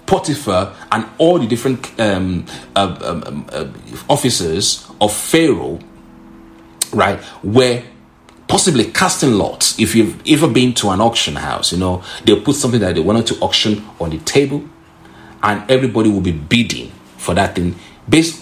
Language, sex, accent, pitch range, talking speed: English, male, Nigerian, 85-120 Hz, 155 wpm